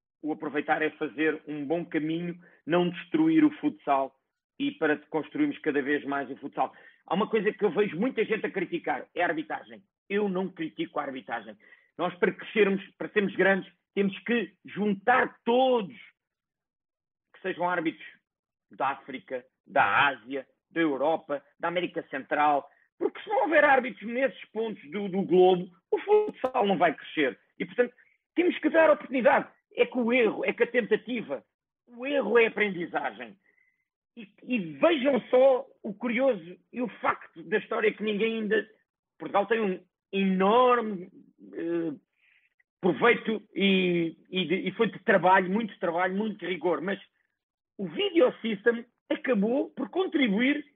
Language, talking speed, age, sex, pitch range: Portuguese, 155 wpm, 50-69, male, 180-255 Hz